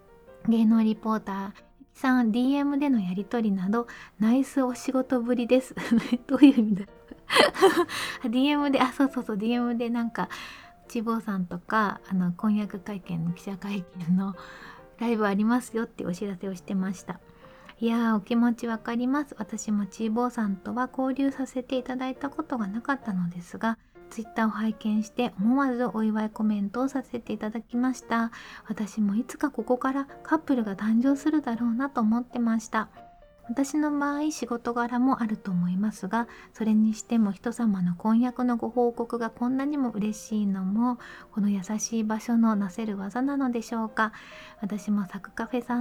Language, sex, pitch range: Japanese, female, 210-250 Hz